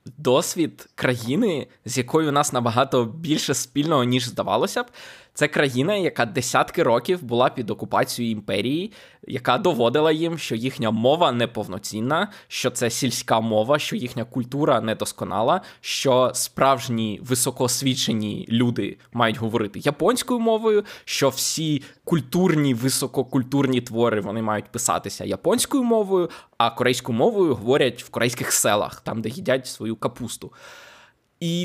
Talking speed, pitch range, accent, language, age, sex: 130 wpm, 115-150 Hz, native, Ukrainian, 20-39, male